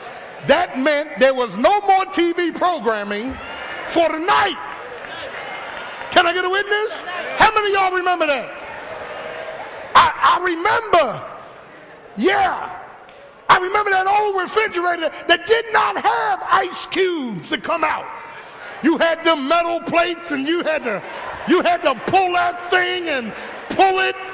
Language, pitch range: English, 310-380 Hz